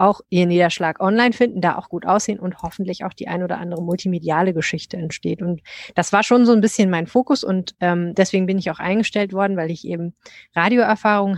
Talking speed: 210 wpm